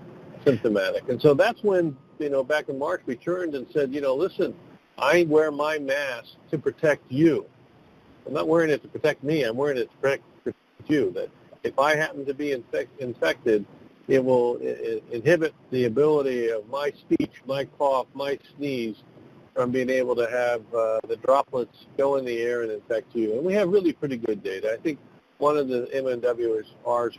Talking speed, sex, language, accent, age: 190 wpm, male, English, American, 50-69